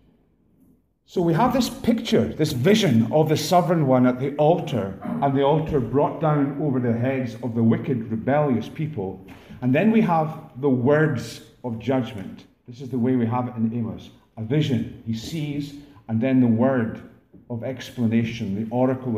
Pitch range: 115-150 Hz